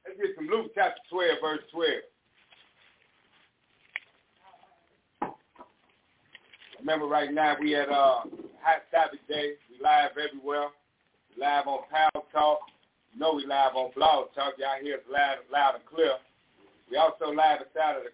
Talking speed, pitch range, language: 150 wpm, 150-170 Hz, English